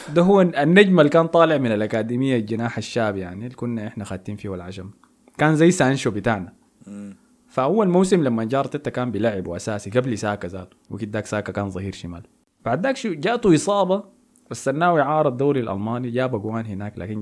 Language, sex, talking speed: Arabic, male, 170 wpm